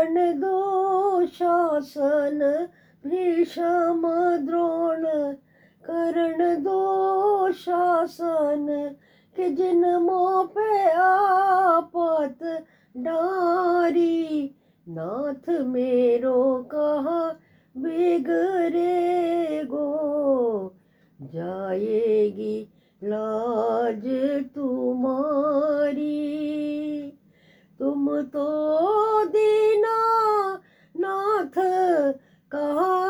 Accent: Indian